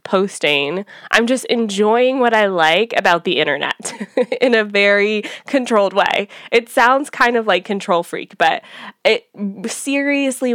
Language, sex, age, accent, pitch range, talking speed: English, female, 20-39, American, 180-245 Hz, 140 wpm